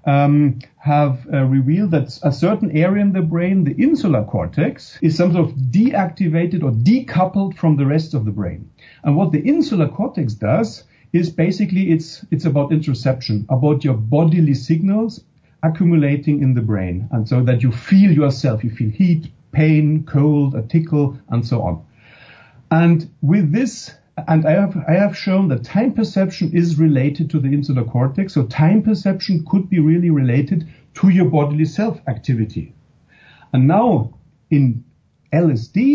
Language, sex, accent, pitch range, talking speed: English, male, German, 135-185 Hz, 160 wpm